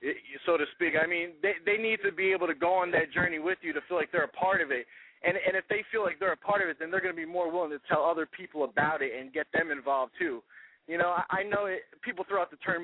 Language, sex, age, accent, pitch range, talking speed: English, male, 20-39, American, 170-205 Hz, 315 wpm